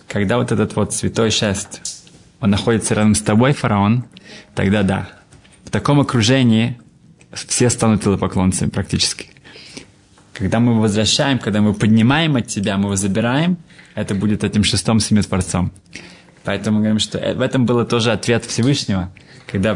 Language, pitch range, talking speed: Russian, 105-130 Hz, 145 wpm